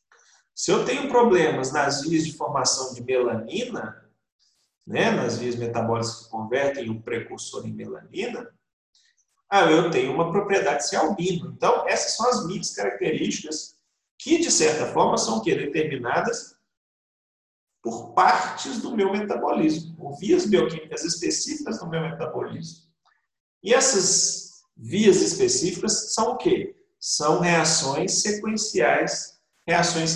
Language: Portuguese